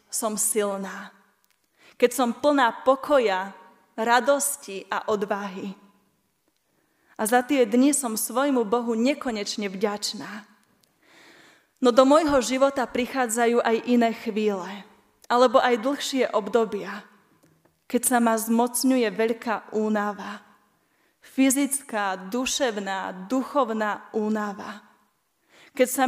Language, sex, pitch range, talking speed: Slovak, female, 210-250 Hz, 95 wpm